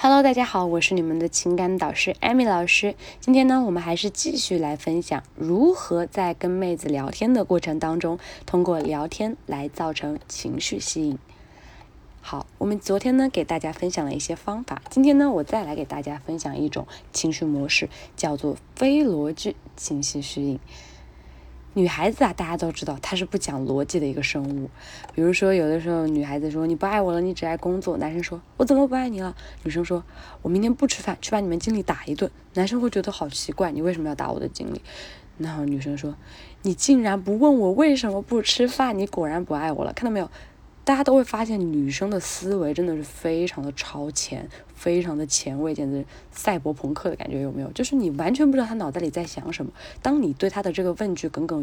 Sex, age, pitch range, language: female, 20-39, 155-215 Hz, Chinese